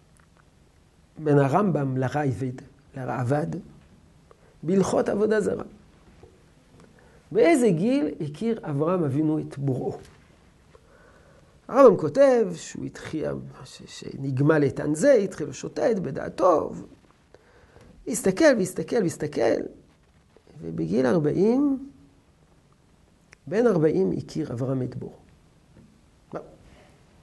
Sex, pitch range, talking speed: male, 125-185 Hz, 80 wpm